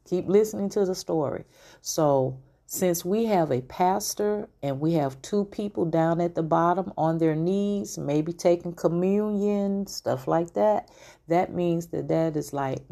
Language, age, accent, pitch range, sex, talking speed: English, 40-59, American, 145-190 Hz, female, 165 wpm